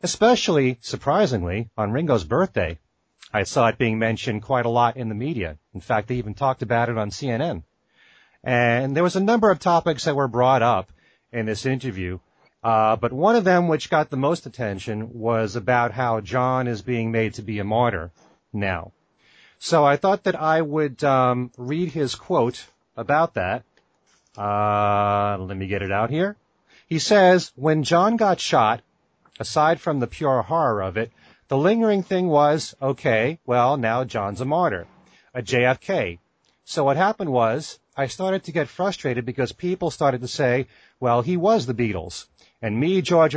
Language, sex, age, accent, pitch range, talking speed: English, male, 30-49, American, 115-155 Hz, 175 wpm